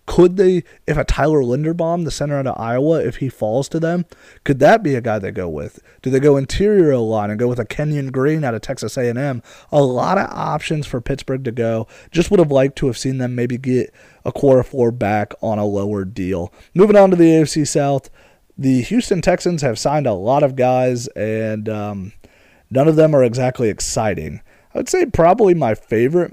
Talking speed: 210 wpm